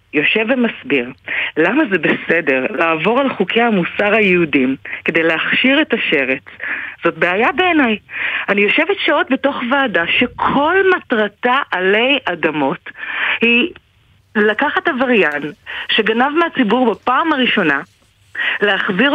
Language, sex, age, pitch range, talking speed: Hebrew, female, 40-59, 210-300 Hz, 105 wpm